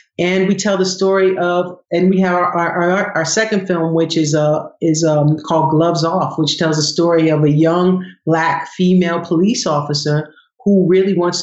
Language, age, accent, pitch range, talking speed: English, 40-59, American, 160-190 Hz, 195 wpm